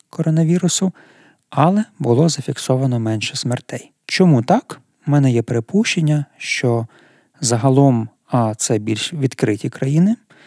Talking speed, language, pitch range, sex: 110 wpm, Ukrainian, 120-160 Hz, male